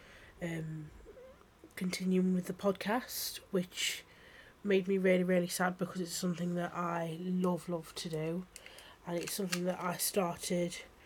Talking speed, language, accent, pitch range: 140 wpm, English, British, 170-195 Hz